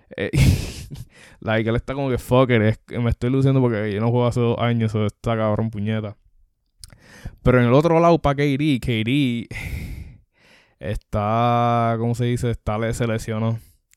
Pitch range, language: 110-135 Hz, Spanish